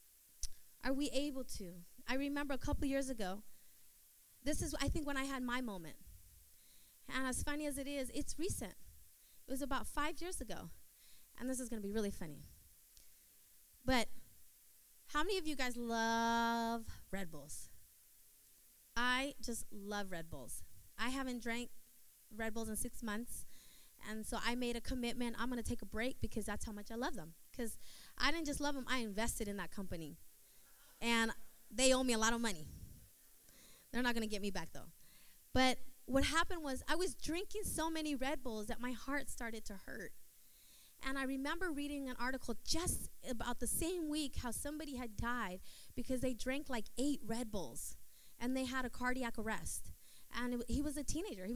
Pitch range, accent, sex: 220-270 Hz, American, female